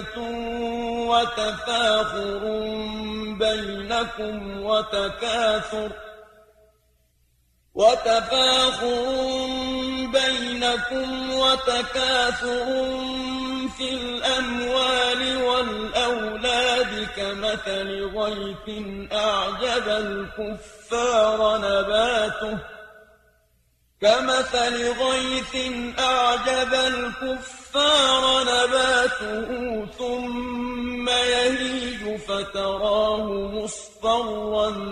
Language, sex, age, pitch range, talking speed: Arabic, male, 30-49, 215-250 Hz, 35 wpm